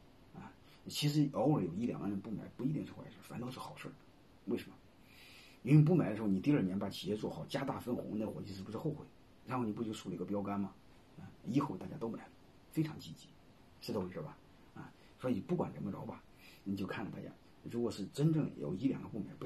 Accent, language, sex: native, Chinese, male